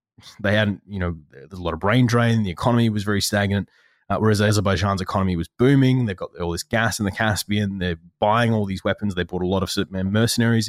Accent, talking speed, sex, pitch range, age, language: Australian, 230 wpm, male, 95-110 Hz, 20-39, English